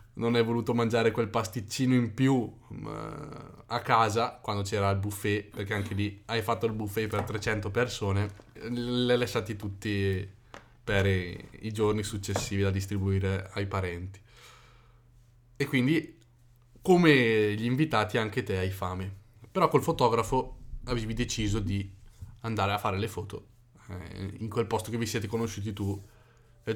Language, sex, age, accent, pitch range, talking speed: Italian, male, 20-39, native, 100-120 Hz, 155 wpm